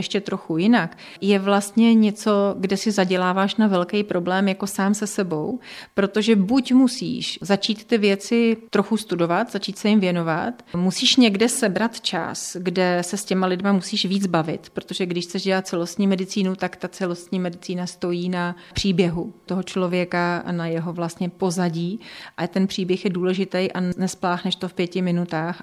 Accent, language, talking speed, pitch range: native, Czech, 165 wpm, 180-200 Hz